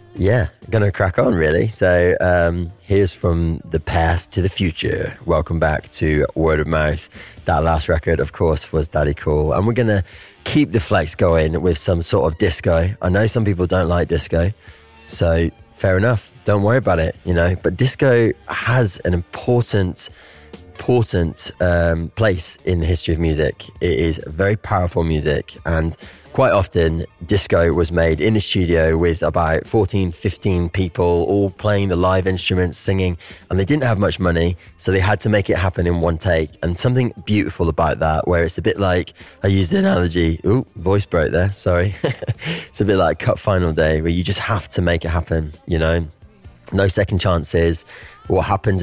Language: English